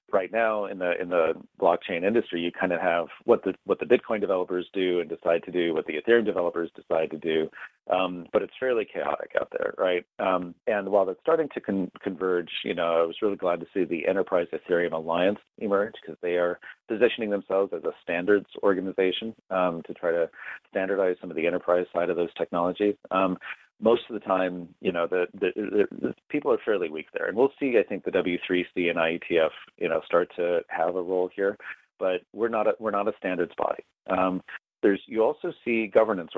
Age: 40-59